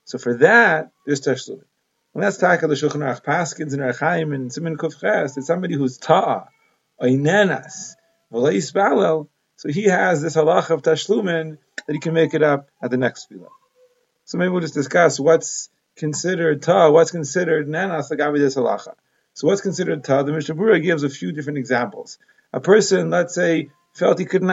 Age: 30-49